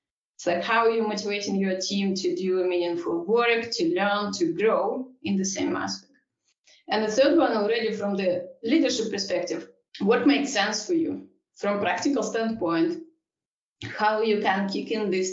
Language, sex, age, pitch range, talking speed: English, female, 20-39, 180-235 Hz, 170 wpm